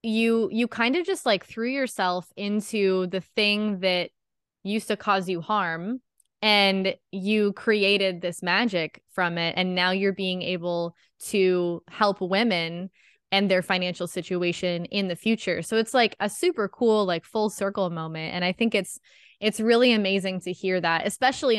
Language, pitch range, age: English, 180-215 Hz, 20-39